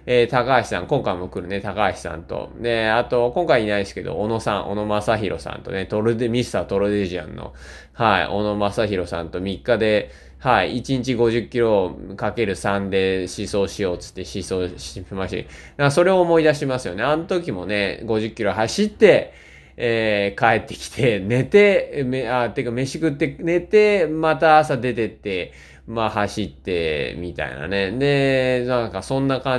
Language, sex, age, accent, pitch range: Japanese, male, 20-39, native, 95-130 Hz